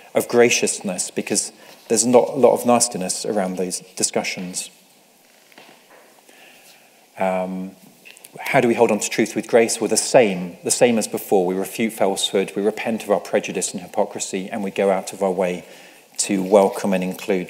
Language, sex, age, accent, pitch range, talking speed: English, male, 40-59, British, 100-125 Hz, 170 wpm